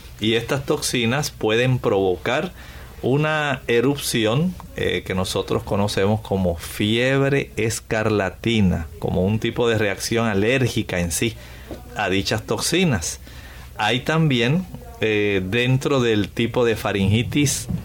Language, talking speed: Spanish, 110 wpm